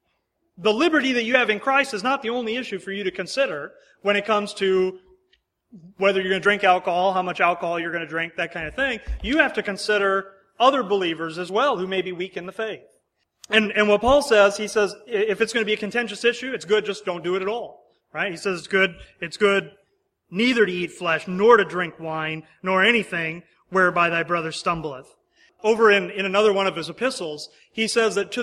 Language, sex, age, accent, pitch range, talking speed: English, male, 30-49, American, 180-225 Hz, 230 wpm